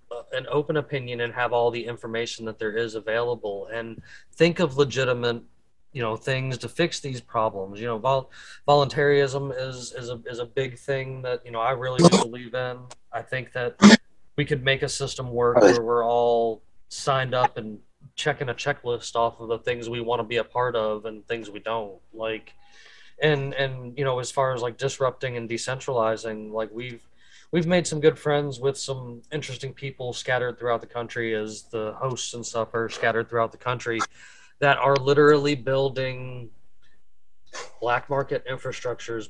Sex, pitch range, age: male, 115-135 Hz, 20-39